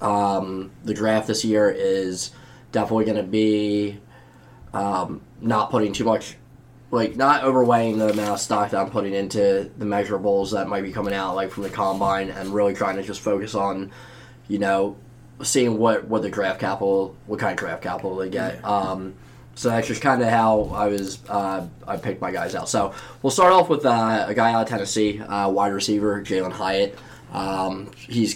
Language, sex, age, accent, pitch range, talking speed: English, male, 10-29, American, 100-115 Hz, 195 wpm